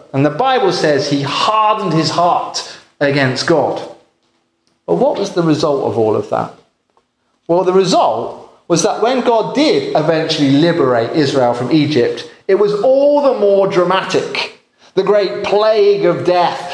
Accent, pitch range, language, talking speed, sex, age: British, 145-225 Hz, English, 155 wpm, male, 30-49